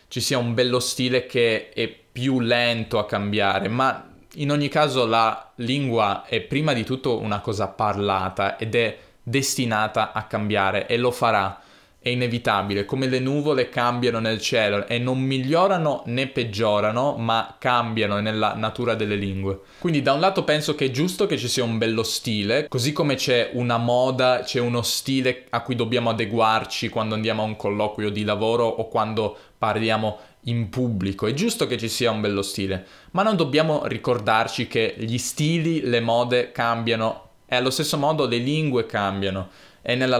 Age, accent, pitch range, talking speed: 20-39, native, 110-130 Hz, 170 wpm